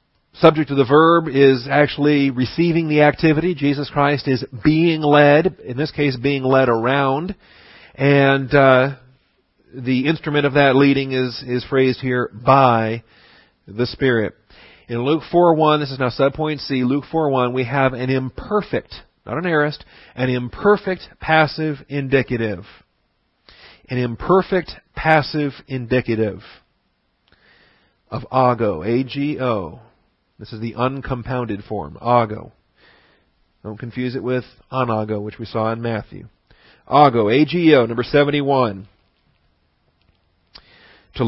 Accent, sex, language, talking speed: American, male, English, 125 wpm